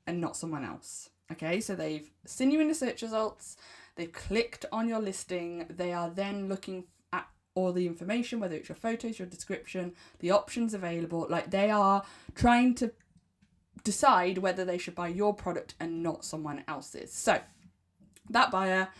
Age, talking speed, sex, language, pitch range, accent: 20-39, 175 wpm, female, English, 170-235 Hz, British